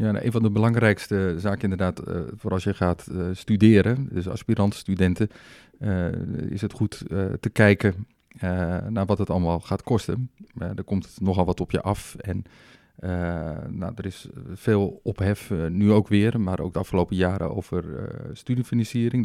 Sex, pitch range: male, 90-110 Hz